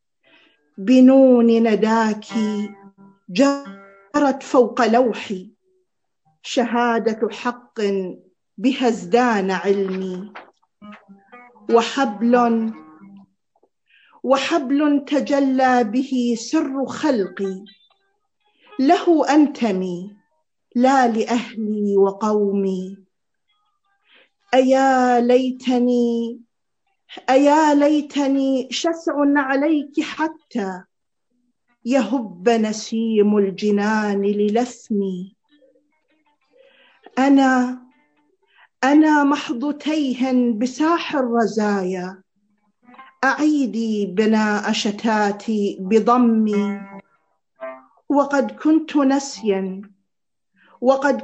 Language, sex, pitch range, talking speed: Arabic, female, 210-285 Hz, 50 wpm